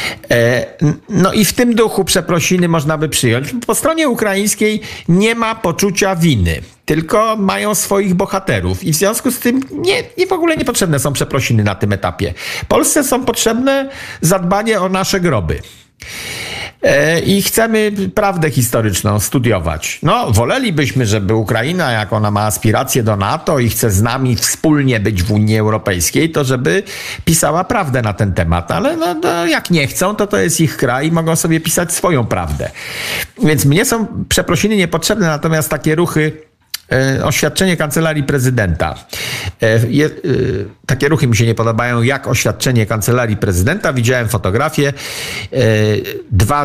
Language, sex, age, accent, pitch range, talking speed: Polish, male, 50-69, native, 115-190 Hz, 145 wpm